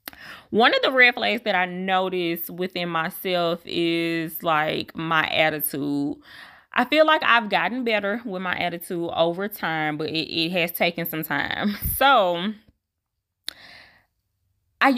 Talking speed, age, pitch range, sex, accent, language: 135 wpm, 20-39, 165-230 Hz, female, American, English